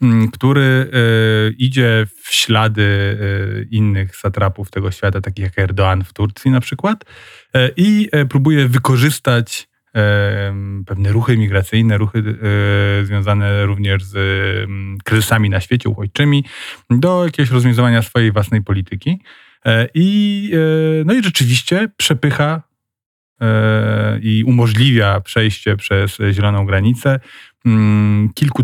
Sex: male